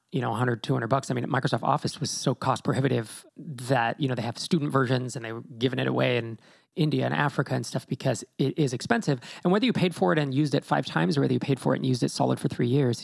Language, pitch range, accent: English, 135-170 Hz, American